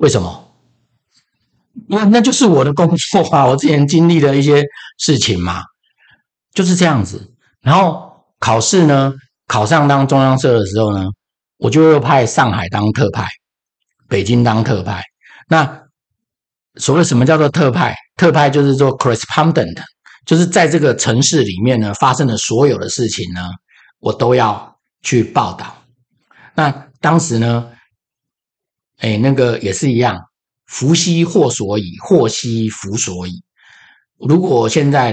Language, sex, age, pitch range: Chinese, male, 50-69, 105-145 Hz